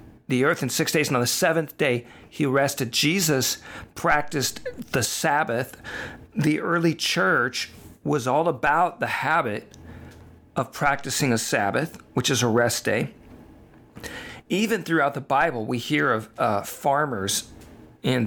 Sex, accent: male, American